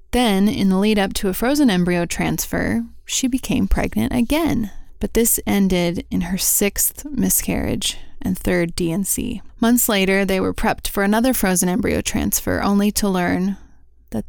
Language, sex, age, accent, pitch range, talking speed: English, female, 20-39, American, 175-215 Hz, 160 wpm